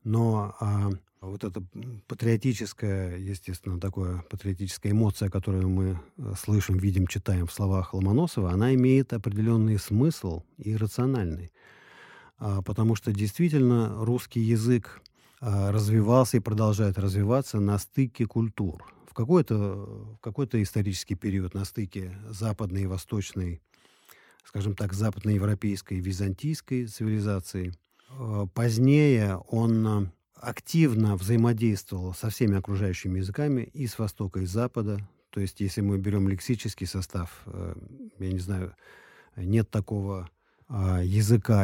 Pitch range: 95-115 Hz